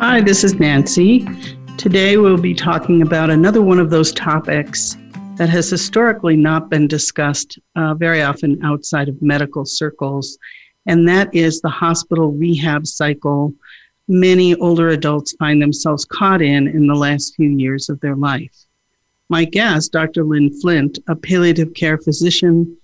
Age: 50-69